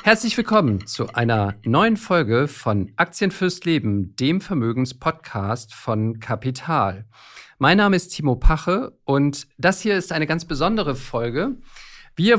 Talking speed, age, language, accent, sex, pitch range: 135 wpm, 50-69, German, German, male, 125-170 Hz